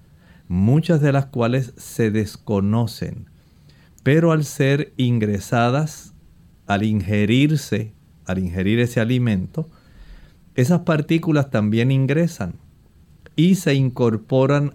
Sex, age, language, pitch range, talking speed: male, 50-69, Spanish, 110-145 Hz, 95 wpm